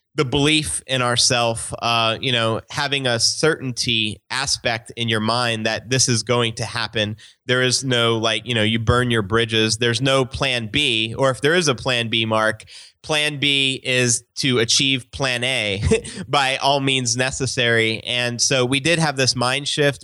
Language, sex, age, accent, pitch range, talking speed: English, male, 30-49, American, 115-135 Hz, 185 wpm